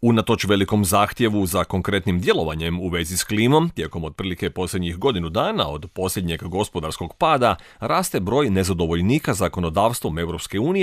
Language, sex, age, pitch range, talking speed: Croatian, male, 40-59, 90-120 Hz, 135 wpm